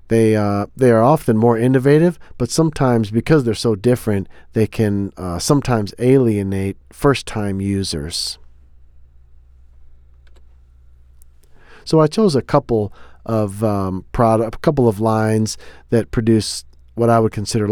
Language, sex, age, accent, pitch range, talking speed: English, male, 40-59, American, 100-125 Hz, 130 wpm